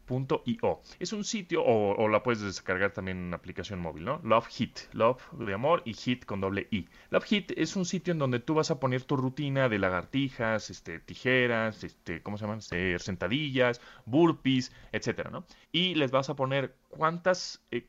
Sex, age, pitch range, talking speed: male, 30-49, 105-155 Hz, 200 wpm